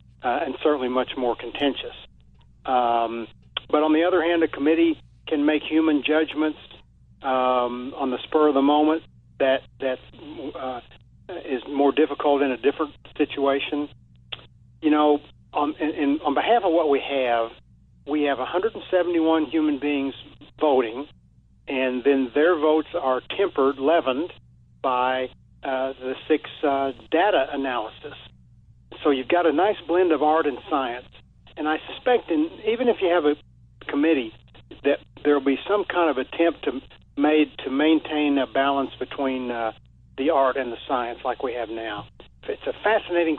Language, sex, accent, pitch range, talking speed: English, male, American, 130-160 Hz, 155 wpm